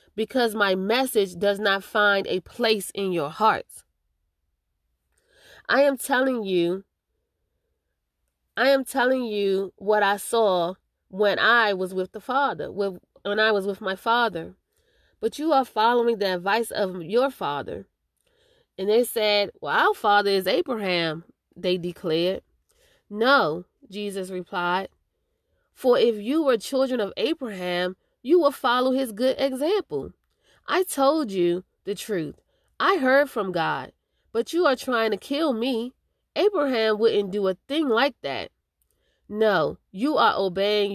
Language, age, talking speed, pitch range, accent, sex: English, 30-49, 140 wpm, 190-260 Hz, American, female